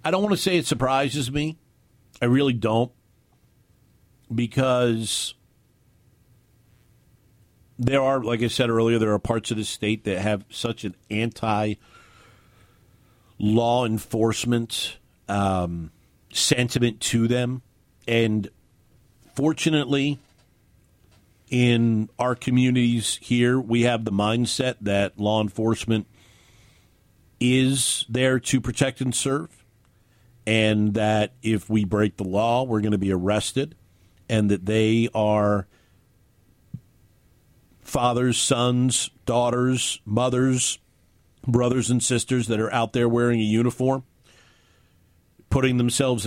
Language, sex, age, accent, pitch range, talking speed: English, male, 50-69, American, 105-125 Hz, 110 wpm